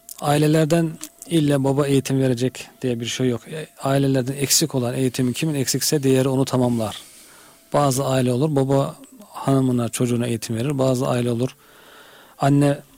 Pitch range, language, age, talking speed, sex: 120-140 Hz, Turkish, 40-59, 140 wpm, male